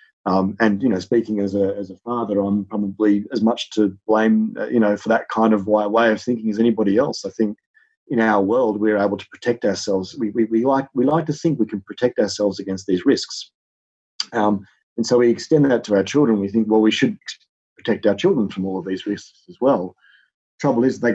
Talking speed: 230 wpm